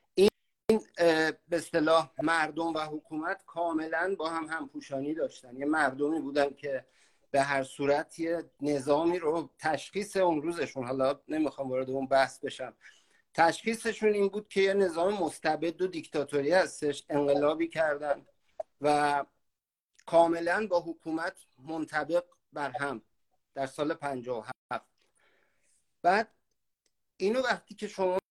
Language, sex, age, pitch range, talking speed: English, male, 50-69, 145-185 Hz, 125 wpm